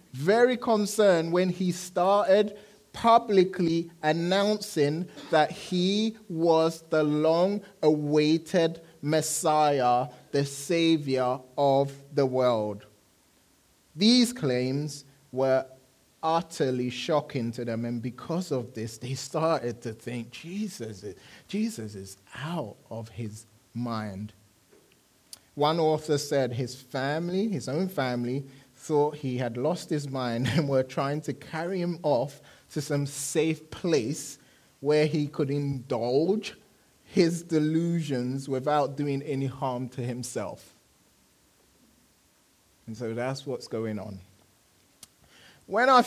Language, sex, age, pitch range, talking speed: English, male, 30-49, 130-170 Hz, 110 wpm